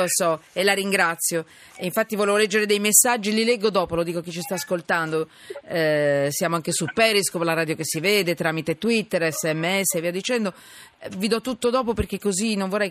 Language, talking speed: Italian, 210 wpm